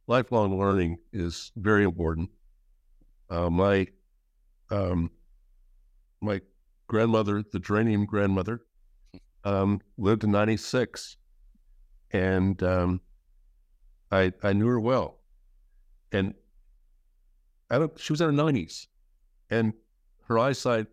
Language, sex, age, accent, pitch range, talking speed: English, male, 60-79, American, 90-125 Hz, 105 wpm